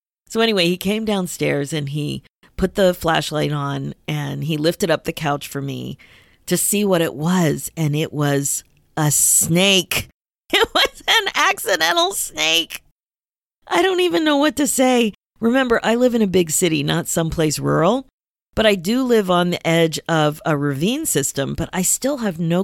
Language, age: English, 40-59